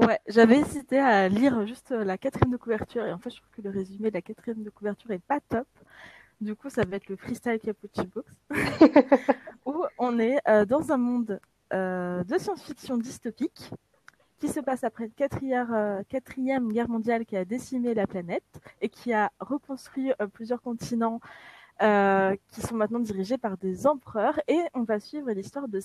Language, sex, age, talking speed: French, female, 20-39, 185 wpm